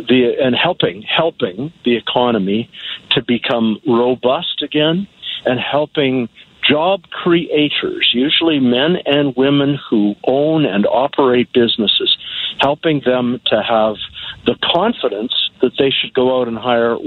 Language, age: English, 50-69